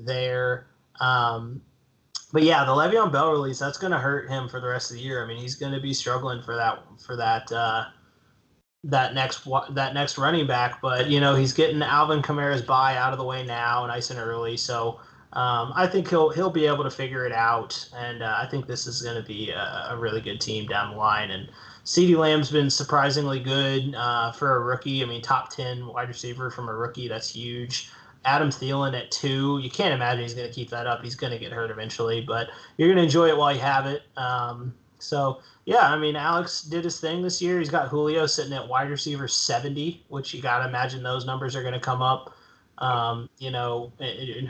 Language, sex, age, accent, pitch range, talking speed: English, male, 30-49, American, 120-140 Hz, 230 wpm